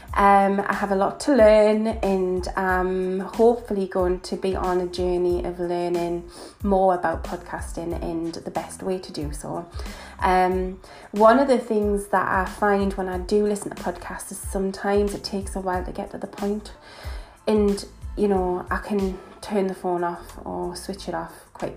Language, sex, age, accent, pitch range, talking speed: English, female, 20-39, British, 175-200 Hz, 185 wpm